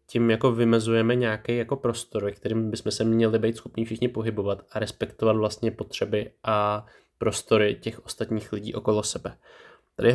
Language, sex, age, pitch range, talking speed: Czech, male, 20-39, 105-120 Hz, 165 wpm